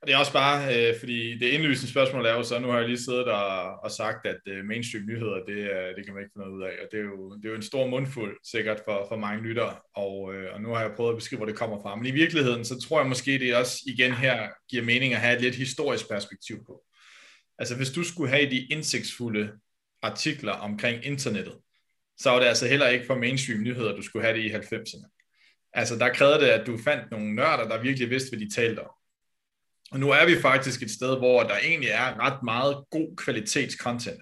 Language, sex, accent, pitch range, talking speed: Danish, male, native, 110-130 Hz, 235 wpm